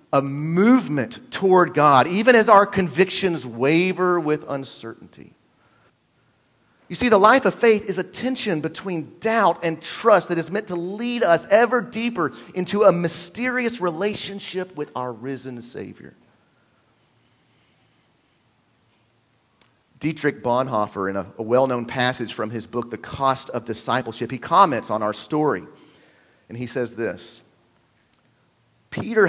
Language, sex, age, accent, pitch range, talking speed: English, male, 40-59, American, 120-180 Hz, 130 wpm